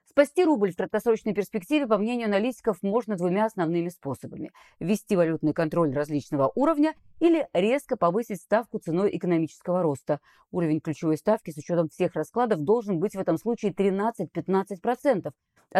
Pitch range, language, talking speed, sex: 165-220 Hz, Russian, 140 wpm, female